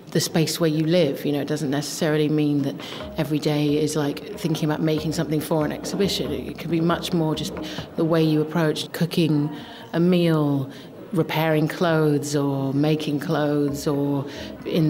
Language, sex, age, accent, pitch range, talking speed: English, female, 30-49, British, 150-170 Hz, 175 wpm